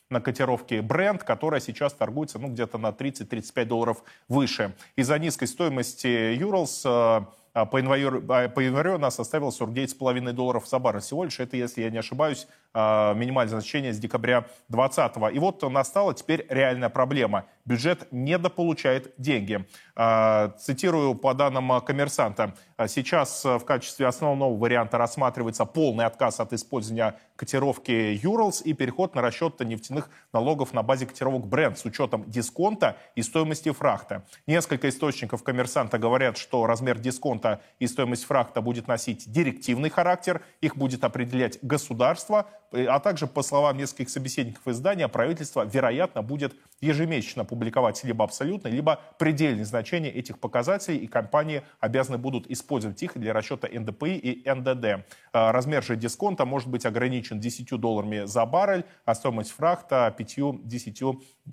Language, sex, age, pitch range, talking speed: Russian, male, 20-39, 115-145 Hz, 135 wpm